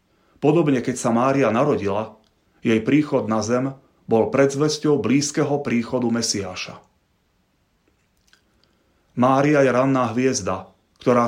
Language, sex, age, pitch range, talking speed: Slovak, male, 30-49, 110-135 Hz, 100 wpm